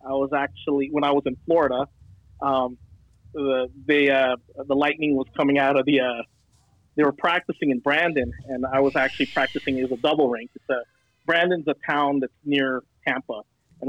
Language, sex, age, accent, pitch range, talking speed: English, male, 30-49, American, 130-165 Hz, 185 wpm